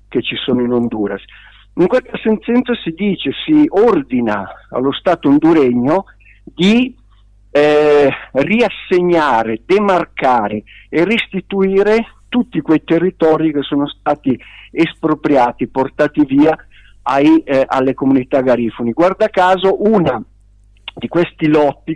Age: 50-69